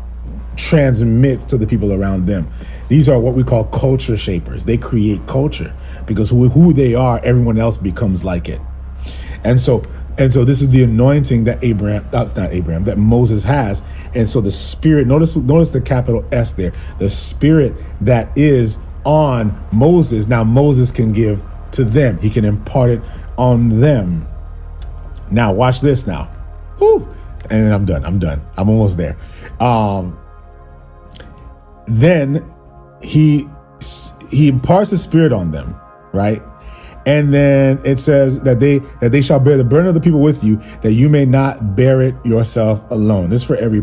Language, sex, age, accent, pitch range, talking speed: English, male, 40-59, American, 80-125 Hz, 165 wpm